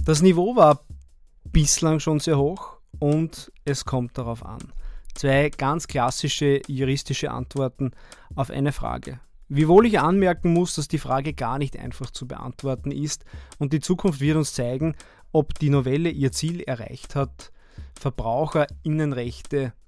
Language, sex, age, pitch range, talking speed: German, male, 20-39, 125-155 Hz, 140 wpm